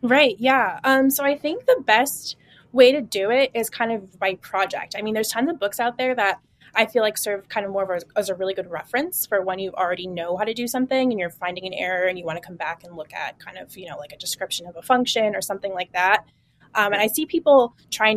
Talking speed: 270 wpm